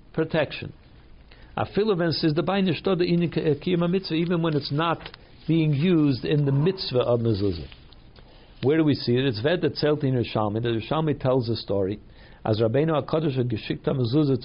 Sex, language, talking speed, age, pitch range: male, English, 170 wpm, 60-79, 120-155 Hz